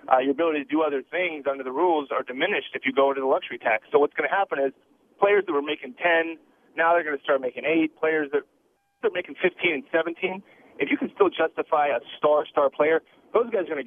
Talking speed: 240 wpm